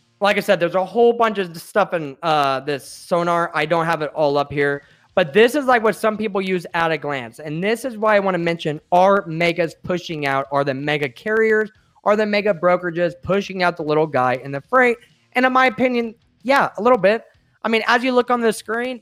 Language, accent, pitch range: English, American, 150-205 Hz